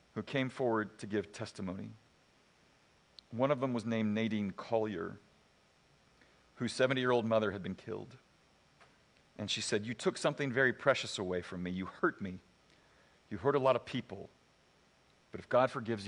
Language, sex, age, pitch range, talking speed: English, male, 50-69, 110-145 Hz, 170 wpm